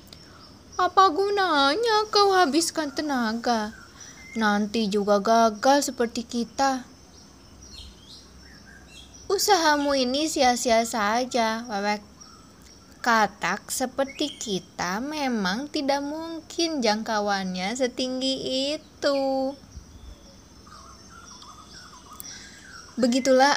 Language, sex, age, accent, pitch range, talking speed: Indonesian, female, 20-39, native, 205-275 Hz, 65 wpm